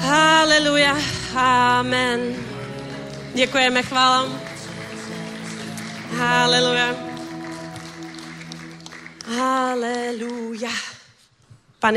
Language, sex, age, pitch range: Czech, female, 30-49, 215-255 Hz